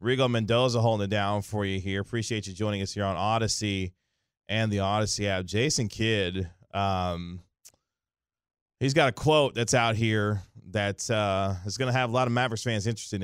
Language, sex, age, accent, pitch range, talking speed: English, male, 30-49, American, 95-120 Hz, 185 wpm